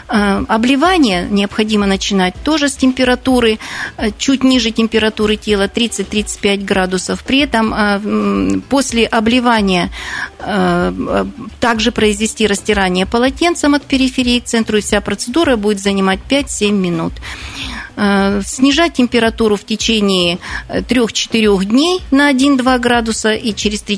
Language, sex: Russian, female